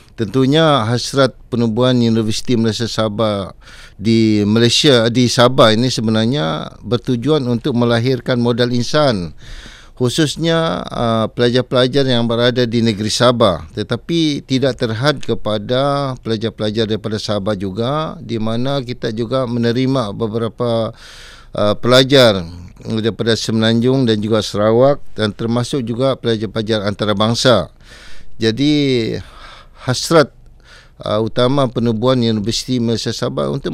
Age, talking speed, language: 50-69, 105 wpm, Malay